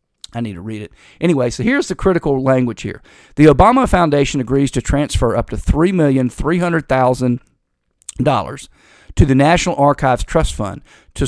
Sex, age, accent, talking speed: male, 50-69, American, 150 wpm